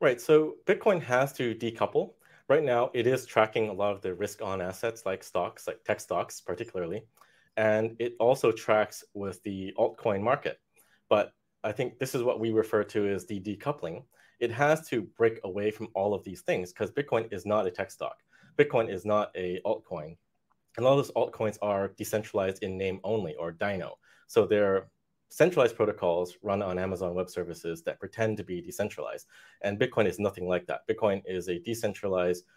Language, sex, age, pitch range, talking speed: English, male, 30-49, 95-115 Hz, 185 wpm